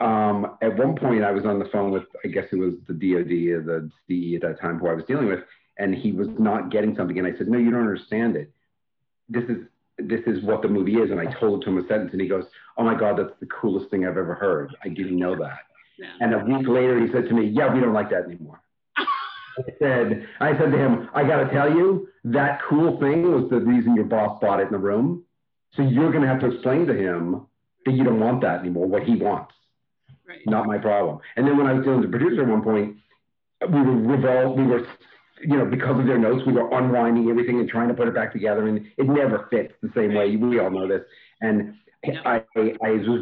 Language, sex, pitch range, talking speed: English, male, 105-130 Hz, 250 wpm